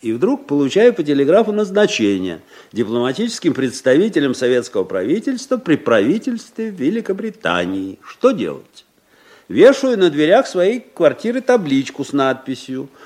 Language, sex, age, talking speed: Russian, male, 50-69, 105 wpm